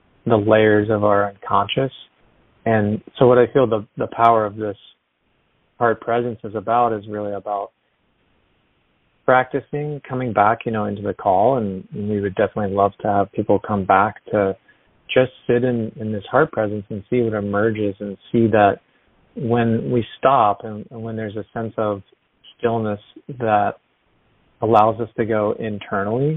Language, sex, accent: English, male, American